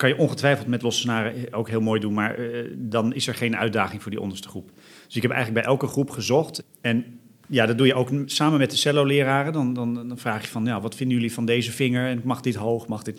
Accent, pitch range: Dutch, 110-140 Hz